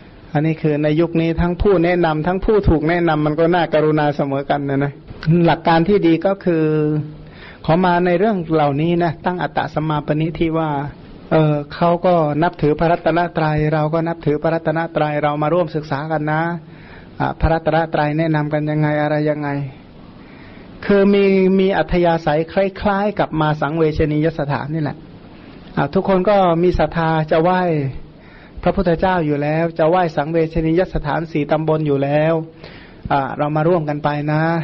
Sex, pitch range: male, 150-175 Hz